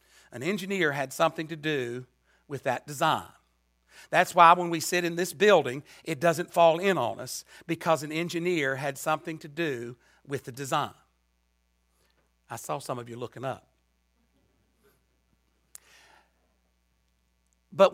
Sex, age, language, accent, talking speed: male, 60-79, English, American, 135 wpm